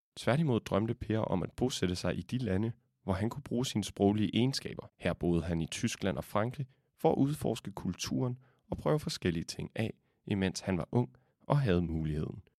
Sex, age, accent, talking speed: male, 30-49, native, 190 wpm